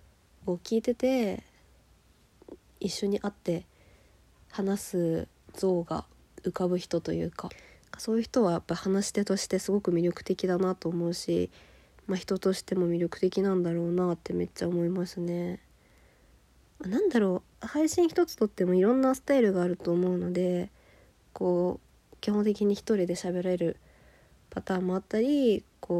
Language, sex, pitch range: Japanese, female, 170-205 Hz